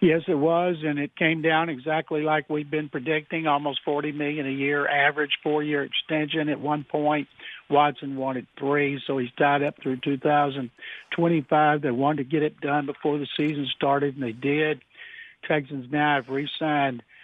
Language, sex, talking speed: English, male, 170 wpm